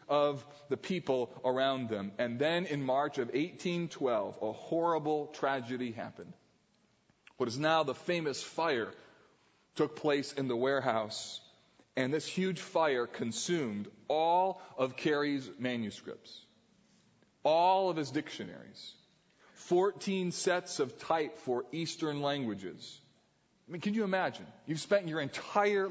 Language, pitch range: English, 135-190 Hz